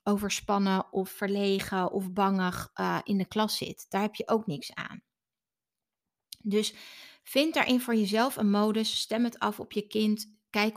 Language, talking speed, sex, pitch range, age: Dutch, 165 wpm, female, 185-215 Hz, 30-49